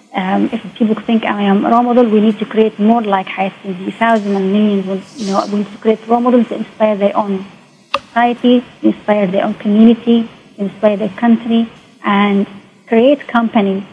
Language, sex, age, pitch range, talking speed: English, female, 30-49, 200-230 Hz, 175 wpm